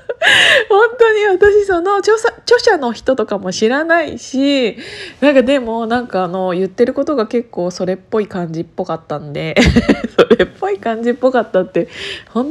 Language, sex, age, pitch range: Japanese, female, 20-39, 175-265 Hz